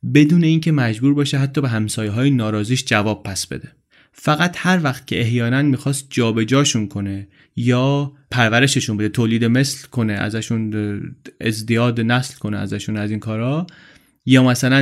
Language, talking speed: Persian, 145 wpm